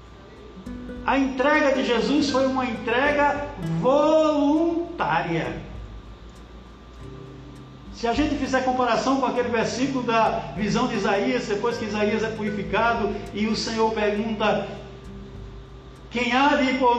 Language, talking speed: Portuguese, 120 wpm